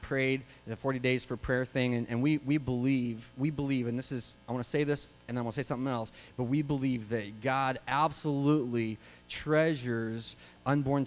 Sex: male